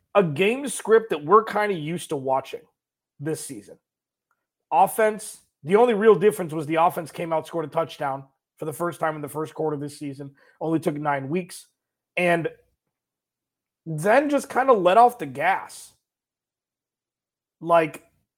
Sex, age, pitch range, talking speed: male, 30-49, 155-210 Hz, 165 wpm